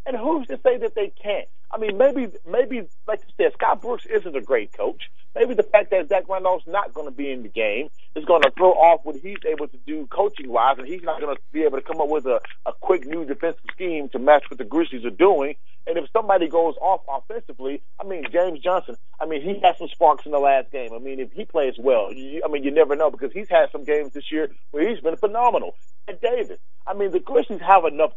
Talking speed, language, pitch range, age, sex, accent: 255 wpm, English, 130-215 Hz, 40-59, male, American